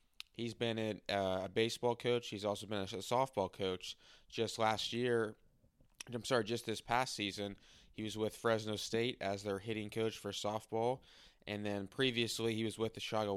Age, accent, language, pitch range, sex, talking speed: 20-39, American, English, 100-115 Hz, male, 175 wpm